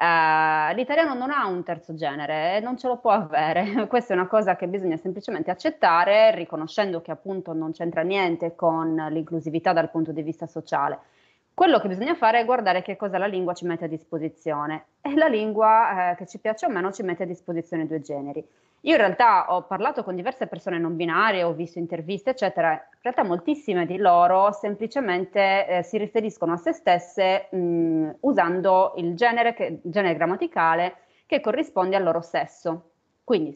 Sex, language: female, Italian